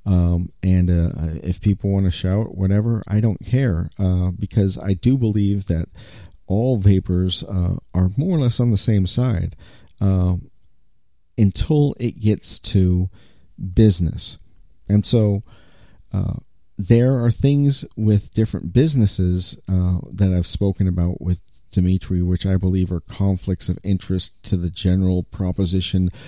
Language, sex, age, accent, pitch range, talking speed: English, male, 40-59, American, 90-110 Hz, 140 wpm